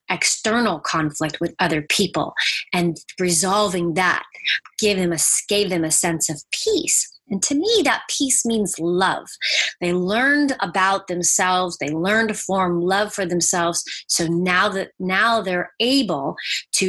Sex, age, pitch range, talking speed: female, 30-49, 175-220 Hz, 150 wpm